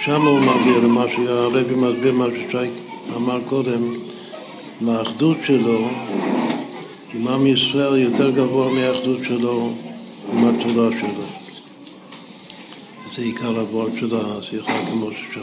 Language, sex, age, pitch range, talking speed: Hebrew, male, 60-79, 120-140 Hz, 110 wpm